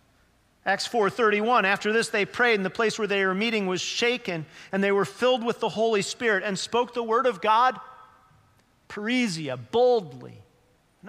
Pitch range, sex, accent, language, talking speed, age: 175-215 Hz, male, American, English, 175 wpm, 40-59